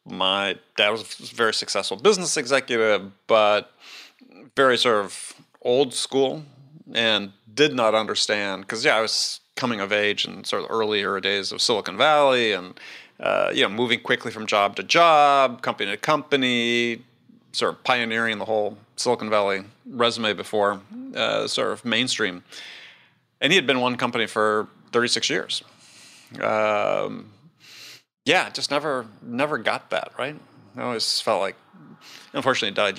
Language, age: English, 30-49